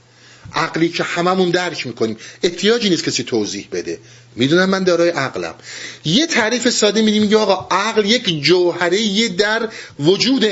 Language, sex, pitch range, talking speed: Persian, male, 120-175 Hz, 145 wpm